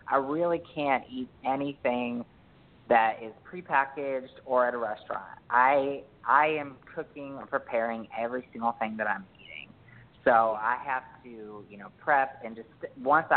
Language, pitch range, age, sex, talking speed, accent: English, 115-135 Hz, 30-49, female, 155 wpm, American